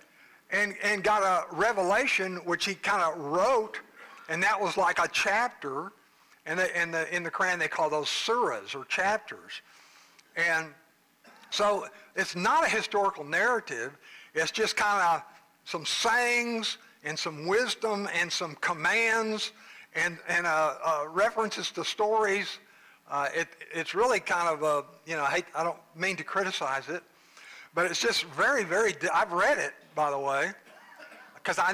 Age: 60-79